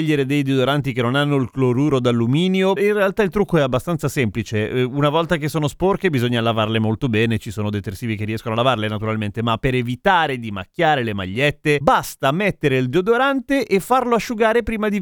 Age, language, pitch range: 30-49, Italian, 125-195 Hz